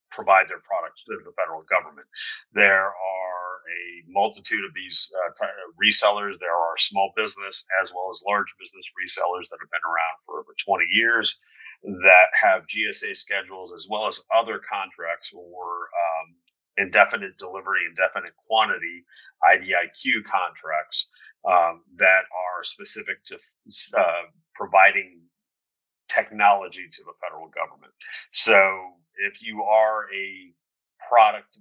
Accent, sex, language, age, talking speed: American, male, English, 30-49, 130 wpm